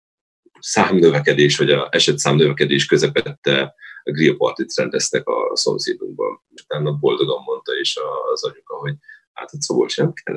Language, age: Hungarian, 30-49